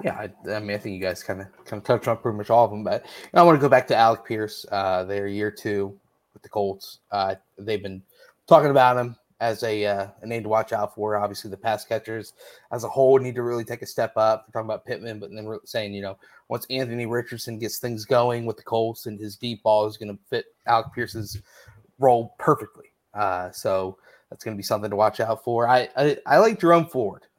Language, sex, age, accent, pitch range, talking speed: English, male, 30-49, American, 105-125 Hz, 250 wpm